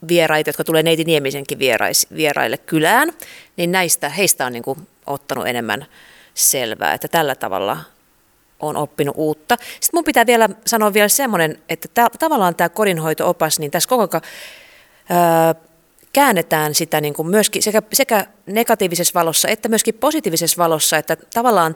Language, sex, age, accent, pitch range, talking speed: Finnish, female, 30-49, native, 150-190 Hz, 150 wpm